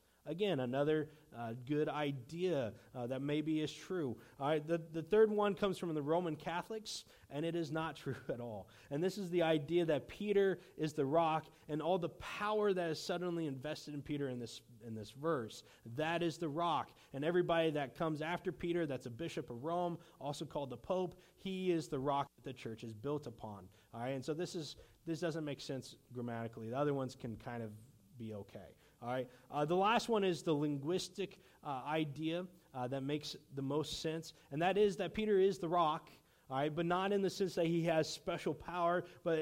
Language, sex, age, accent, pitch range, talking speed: English, male, 30-49, American, 145-185 Hz, 215 wpm